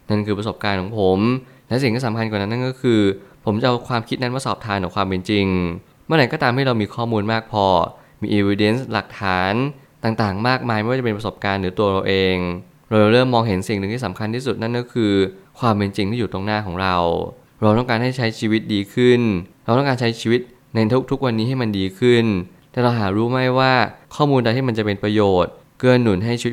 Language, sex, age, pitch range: Thai, male, 20-39, 100-120 Hz